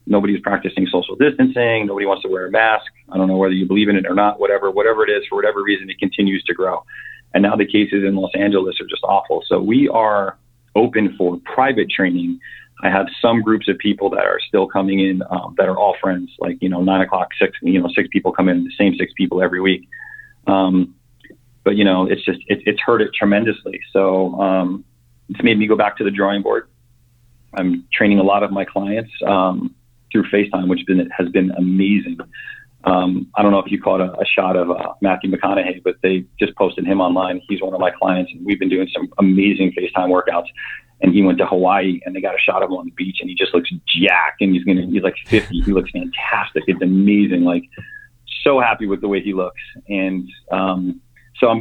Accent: American